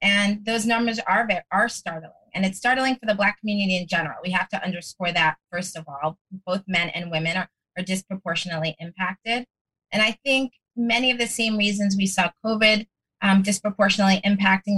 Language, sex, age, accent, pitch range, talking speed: English, female, 20-39, American, 185-210 Hz, 185 wpm